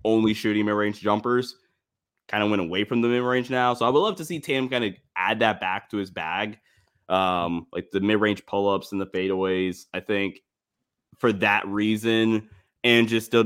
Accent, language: American, English